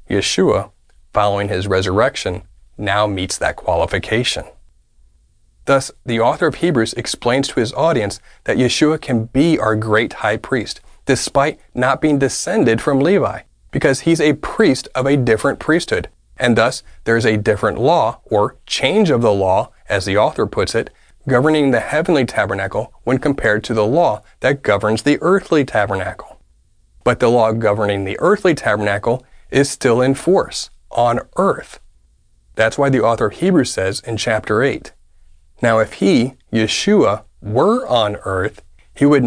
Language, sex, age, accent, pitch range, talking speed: English, male, 30-49, American, 100-135 Hz, 155 wpm